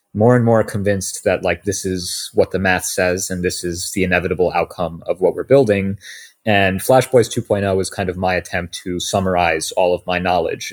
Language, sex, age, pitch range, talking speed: English, male, 30-49, 90-100 Hz, 205 wpm